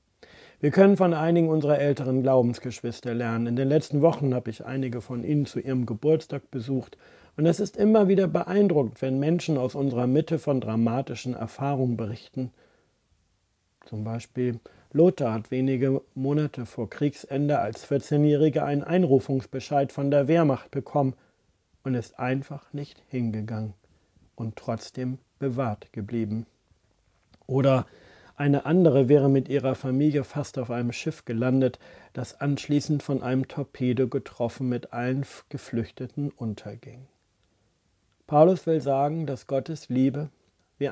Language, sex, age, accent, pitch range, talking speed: German, male, 40-59, German, 120-145 Hz, 130 wpm